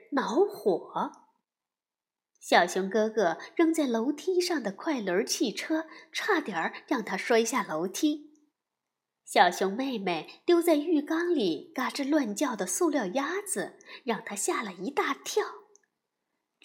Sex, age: female, 20-39